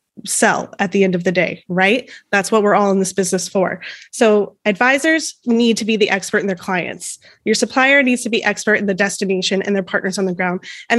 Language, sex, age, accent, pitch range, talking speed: English, female, 20-39, American, 195-235 Hz, 230 wpm